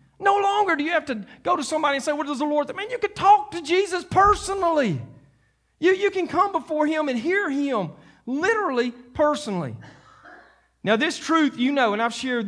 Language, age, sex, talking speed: English, 40-59, male, 200 wpm